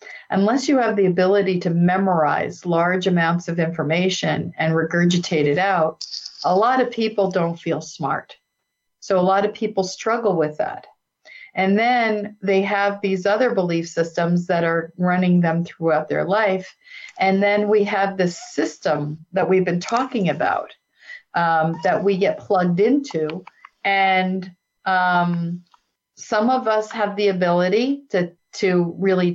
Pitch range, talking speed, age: 175-210 Hz, 150 wpm, 50-69